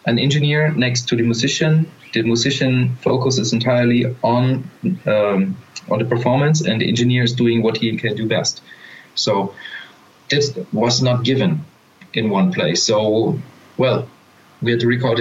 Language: English